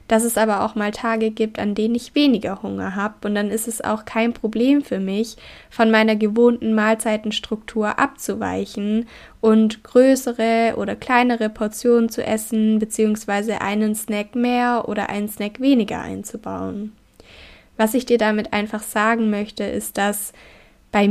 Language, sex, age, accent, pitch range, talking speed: German, female, 20-39, German, 205-230 Hz, 150 wpm